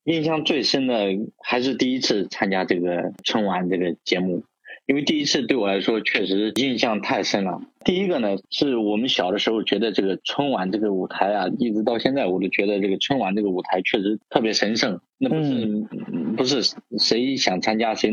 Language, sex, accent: Chinese, male, native